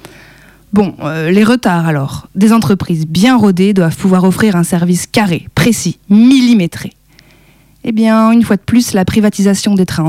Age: 20-39